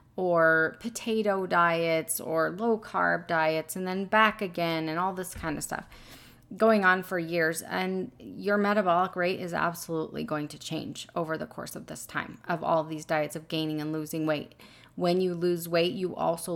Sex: female